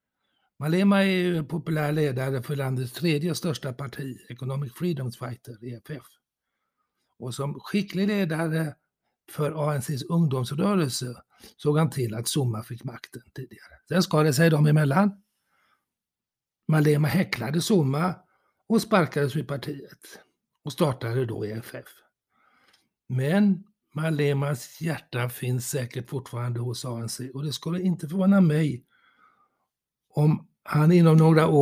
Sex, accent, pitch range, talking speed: male, Swedish, 130-170 Hz, 120 wpm